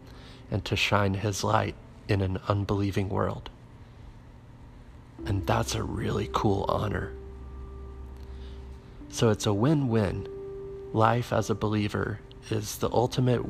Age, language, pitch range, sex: 30-49, English, 100-130 Hz, male